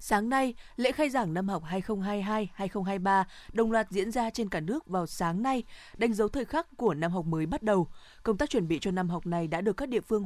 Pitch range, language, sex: 180-230 Hz, Vietnamese, female